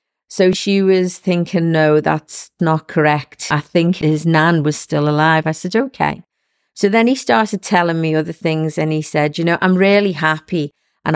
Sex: female